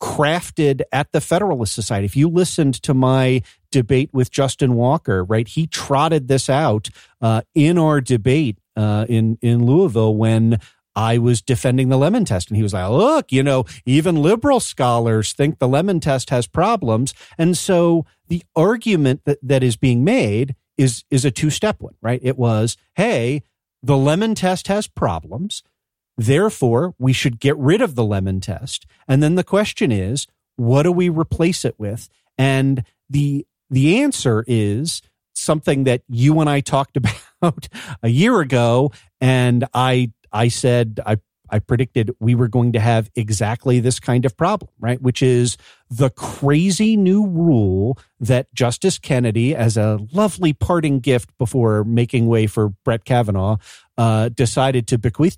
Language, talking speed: English, 165 wpm